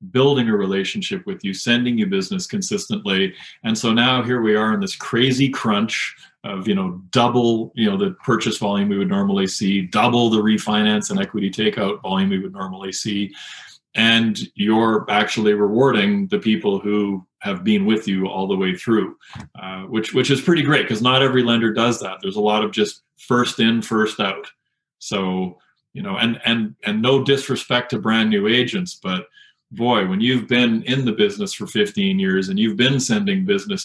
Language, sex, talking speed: English, male, 190 wpm